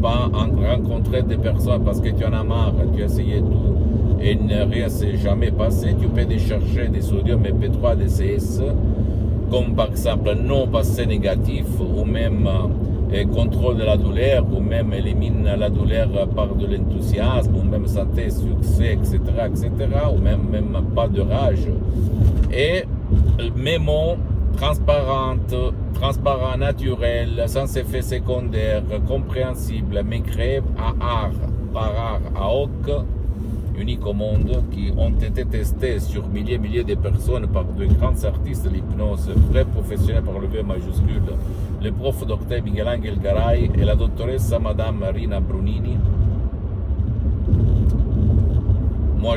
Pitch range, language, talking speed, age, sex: 95-105 Hz, Italian, 140 wpm, 60-79, male